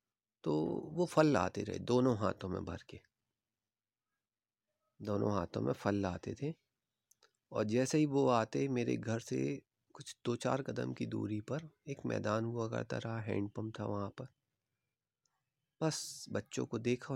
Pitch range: 105-130 Hz